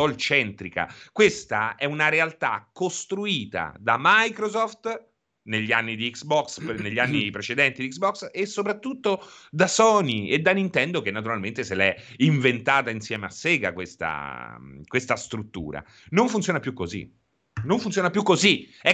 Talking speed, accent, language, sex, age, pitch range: 140 wpm, native, Italian, male, 30-49, 125-195 Hz